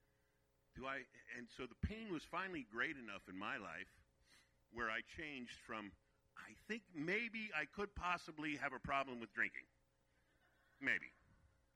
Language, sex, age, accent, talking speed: English, male, 50-69, American, 150 wpm